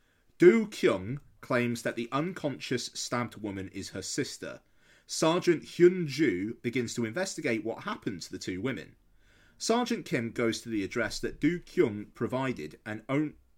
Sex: male